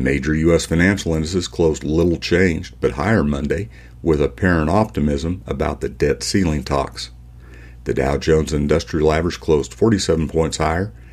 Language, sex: English, male